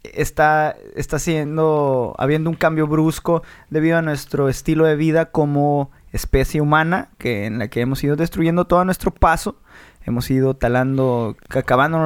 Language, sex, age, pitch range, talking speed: Spanish, male, 20-39, 130-160 Hz, 150 wpm